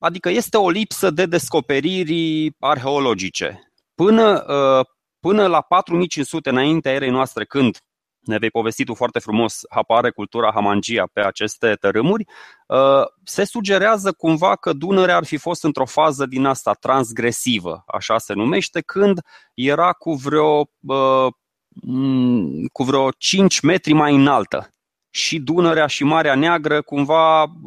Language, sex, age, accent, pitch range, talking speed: Romanian, male, 20-39, native, 120-160 Hz, 130 wpm